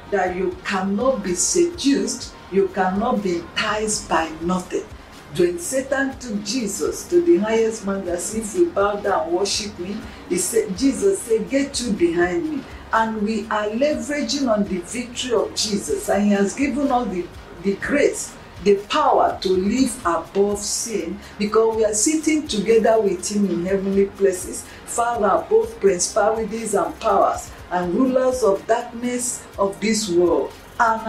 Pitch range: 185-270 Hz